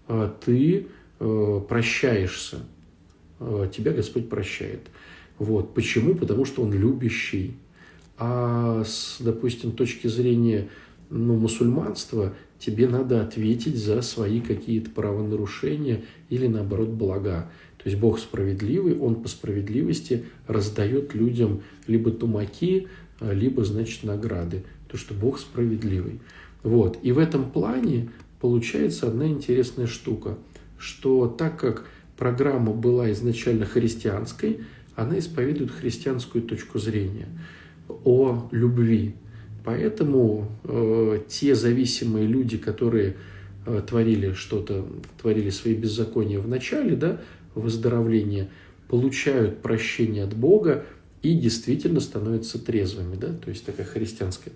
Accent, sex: native, male